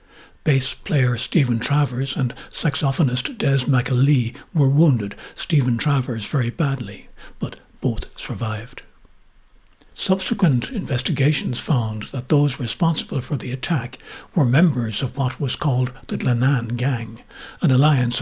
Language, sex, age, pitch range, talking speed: English, male, 60-79, 125-150 Hz, 120 wpm